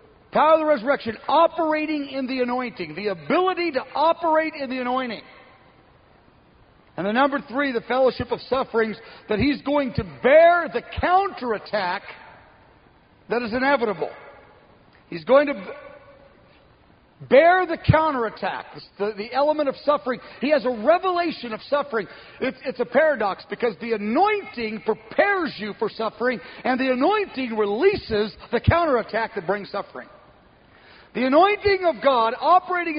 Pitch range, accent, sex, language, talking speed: 215-290 Hz, American, male, English, 135 wpm